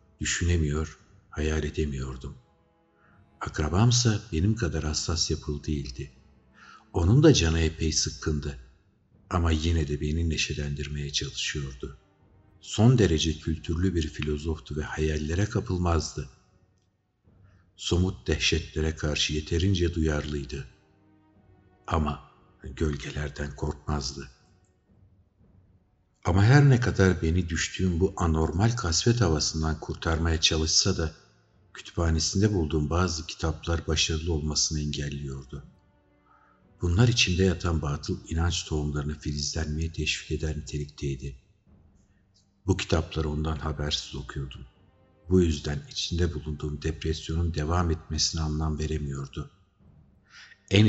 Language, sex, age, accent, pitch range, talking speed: Turkish, male, 50-69, native, 75-95 Hz, 95 wpm